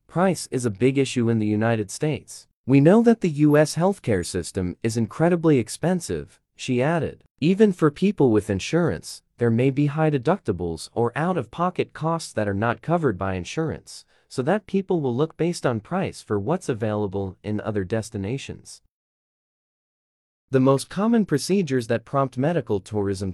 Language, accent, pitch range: Chinese, American, 105-160 Hz